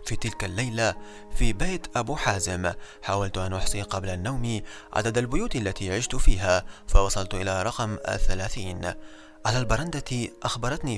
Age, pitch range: 30-49, 100-130 Hz